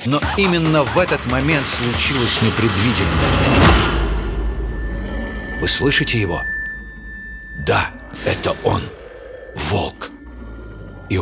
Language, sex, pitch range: Russian, male, 85-120 Hz